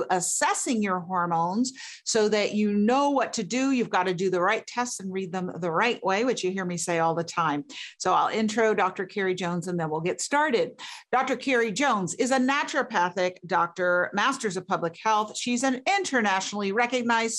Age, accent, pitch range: 40-59, American, 185-250 Hz